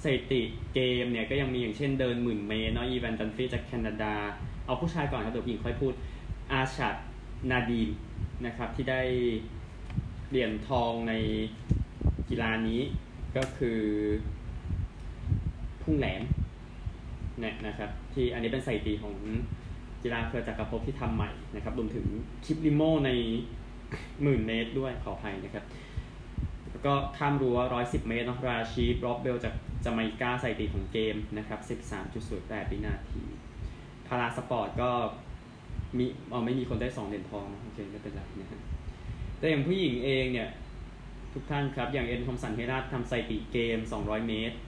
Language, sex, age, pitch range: Thai, male, 20-39, 105-125 Hz